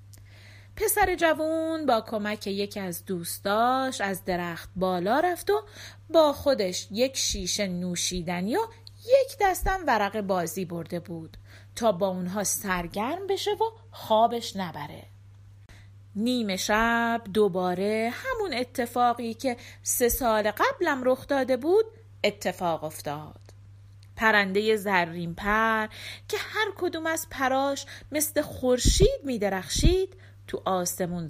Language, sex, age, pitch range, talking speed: Persian, female, 30-49, 170-265 Hz, 115 wpm